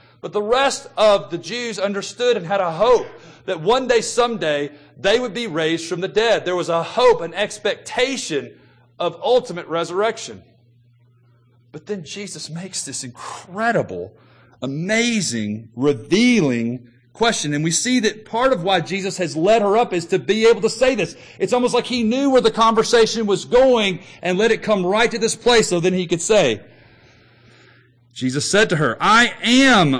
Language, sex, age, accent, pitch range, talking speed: English, male, 40-59, American, 130-210 Hz, 175 wpm